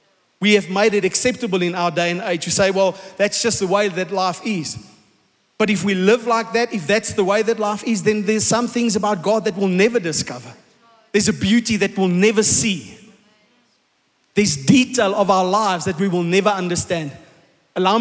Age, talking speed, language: 30-49, 205 wpm, English